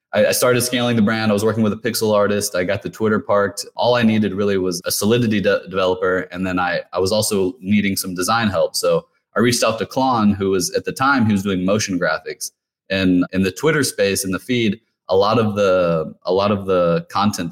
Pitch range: 95-115 Hz